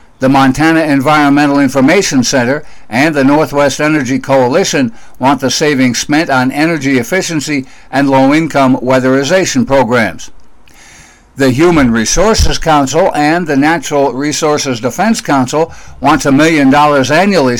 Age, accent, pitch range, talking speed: 60-79, American, 130-160 Hz, 125 wpm